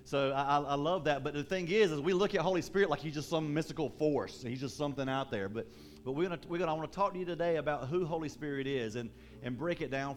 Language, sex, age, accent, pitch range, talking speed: English, male, 40-59, American, 120-150 Hz, 290 wpm